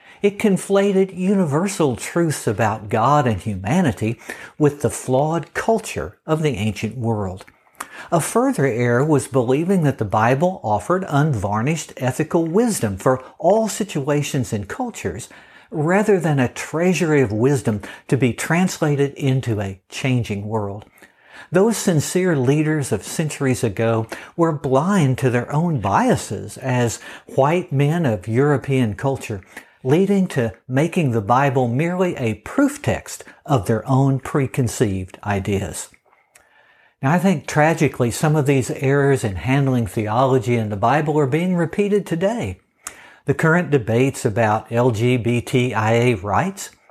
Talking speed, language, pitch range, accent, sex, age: 130 wpm, English, 115-170 Hz, American, male, 60-79